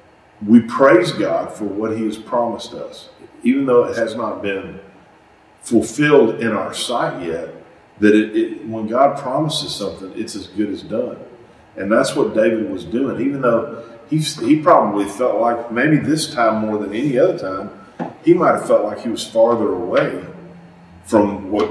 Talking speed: 170 wpm